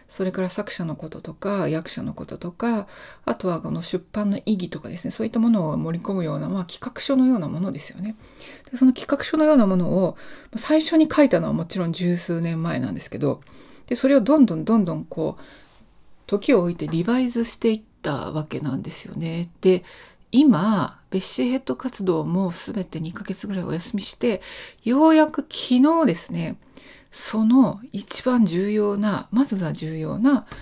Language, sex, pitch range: Japanese, female, 180-255 Hz